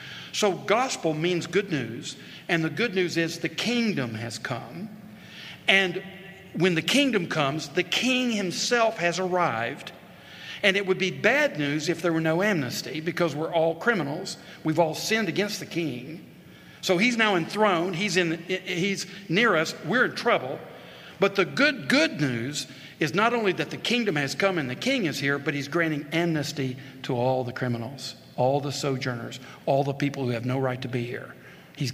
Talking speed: 180 wpm